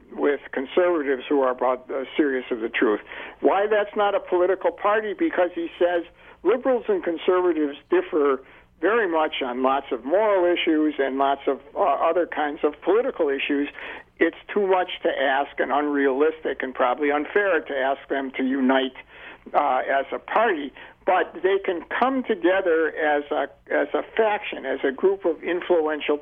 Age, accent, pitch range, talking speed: 60-79, American, 145-205 Hz, 165 wpm